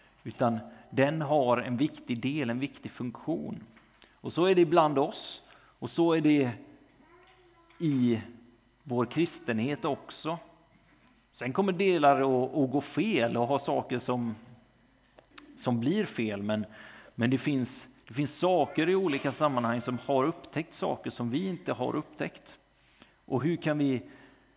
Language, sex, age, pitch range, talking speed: Swedish, male, 30-49, 120-155 Hz, 140 wpm